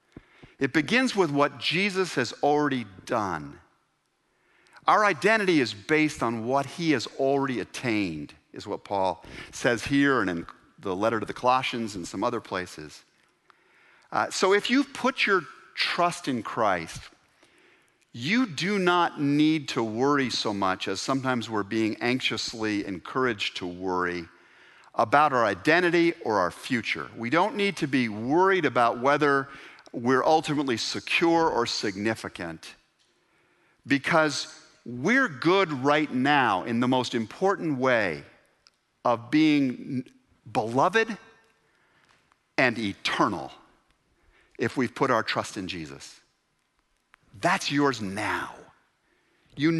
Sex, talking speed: male, 125 wpm